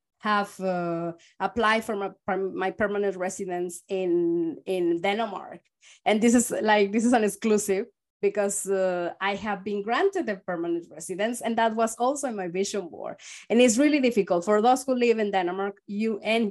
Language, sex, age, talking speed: English, female, 20-39, 175 wpm